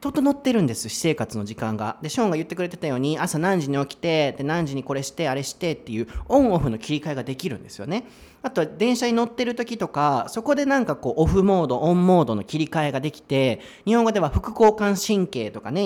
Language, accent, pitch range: Japanese, native, 135-220 Hz